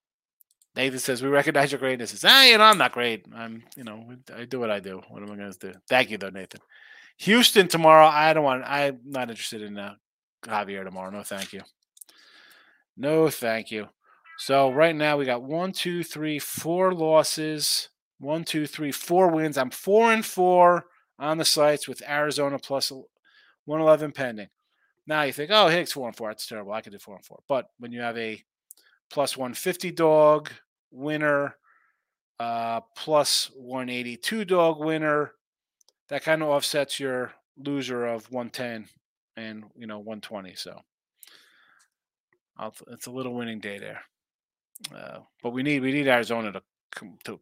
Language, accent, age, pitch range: English, American, 30-49, 115-155 Hz